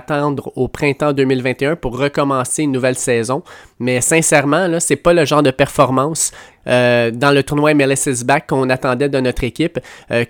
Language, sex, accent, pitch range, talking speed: French, male, Canadian, 130-155 Hz, 175 wpm